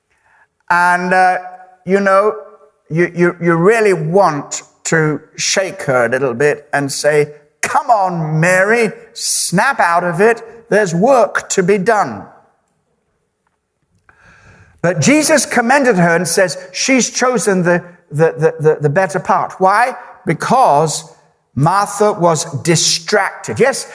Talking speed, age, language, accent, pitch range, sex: 125 wpm, 60-79, English, British, 155-215 Hz, male